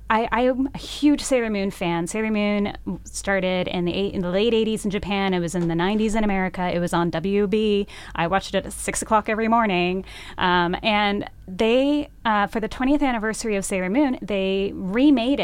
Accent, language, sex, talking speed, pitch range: American, English, female, 190 wpm, 180-225 Hz